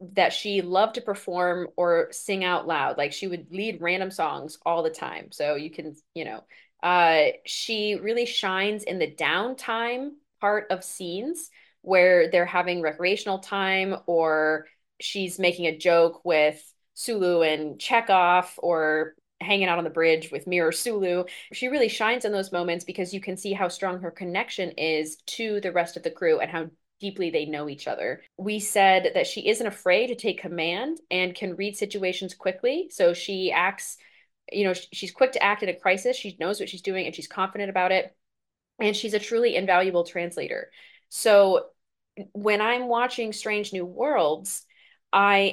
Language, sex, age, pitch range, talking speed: English, female, 20-39, 170-210 Hz, 175 wpm